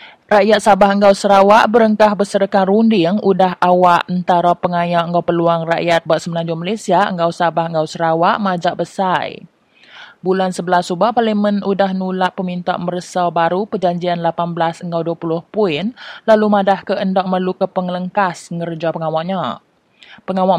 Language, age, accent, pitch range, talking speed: English, 20-39, Indonesian, 170-200 Hz, 130 wpm